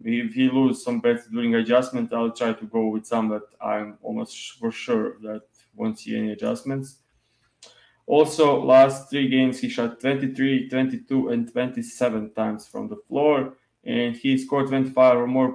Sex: male